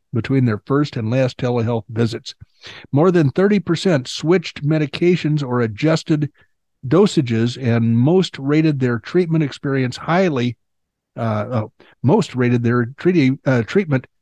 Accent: American